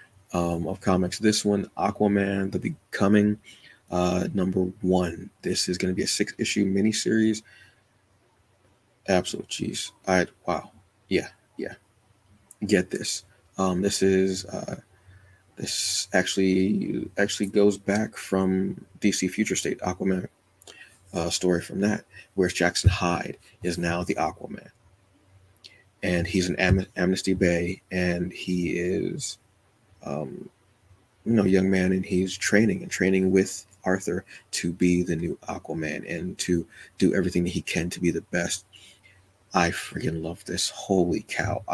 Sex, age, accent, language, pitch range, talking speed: male, 30-49, American, English, 90-100 Hz, 140 wpm